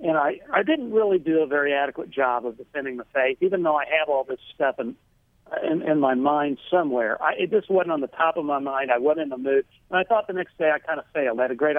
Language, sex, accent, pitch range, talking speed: English, male, American, 130-165 Hz, 285 wpm